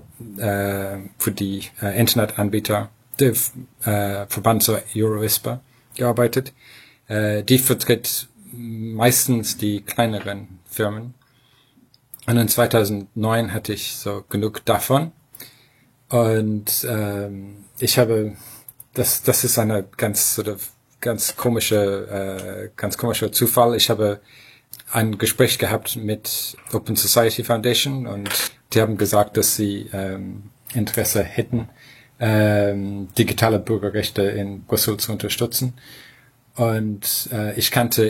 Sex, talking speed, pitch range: male, 115 wpm, 105-120 Hz